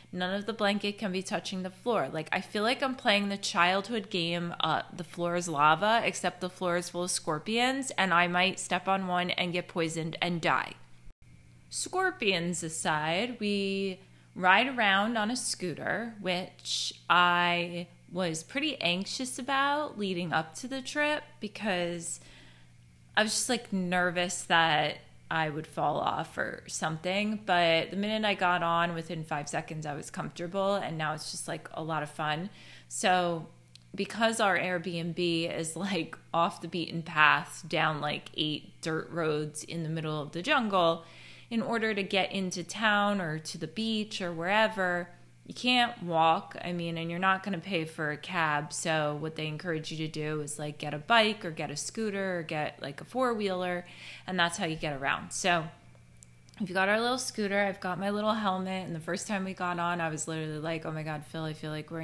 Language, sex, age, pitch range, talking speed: English, female, 20-39, 160-200 Hz, 190 wpm